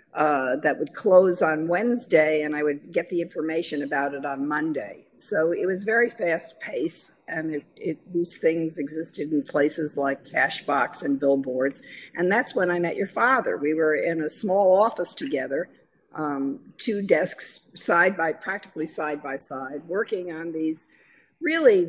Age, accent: 50-69, American